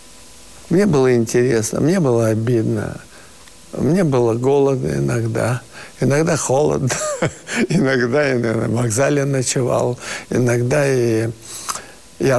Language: Russian